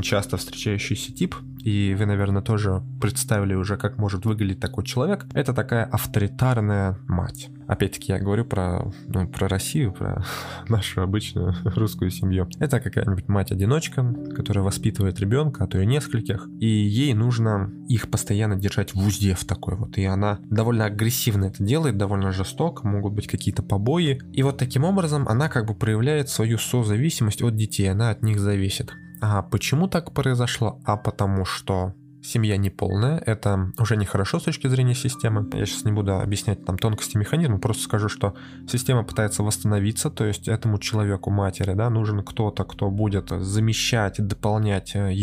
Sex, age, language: male, 20-39, Russian